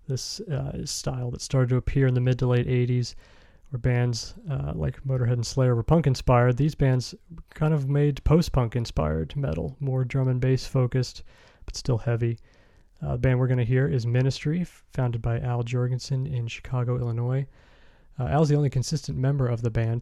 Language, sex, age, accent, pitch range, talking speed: English, male, 30-49, American, 120-135 Hz, 190 wpm